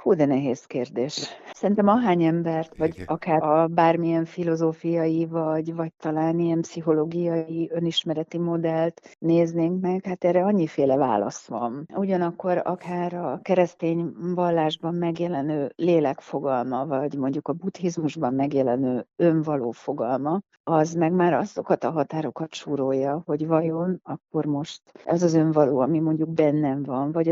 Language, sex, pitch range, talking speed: Hungarian, female, 145-170 Hz, 130 wpm